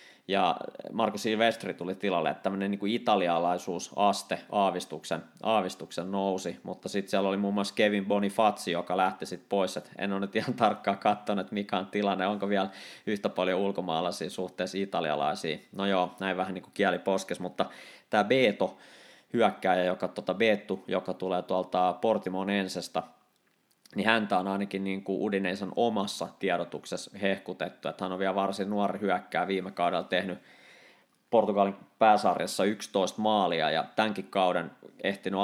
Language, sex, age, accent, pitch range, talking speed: Finnish, male, 20-39, native, 90-100 Hz, 145 wpm